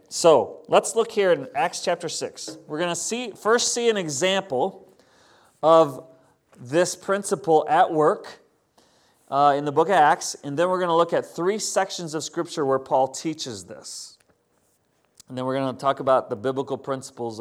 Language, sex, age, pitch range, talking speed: English, male, 40-59, 135-185 Hz, 175 wpm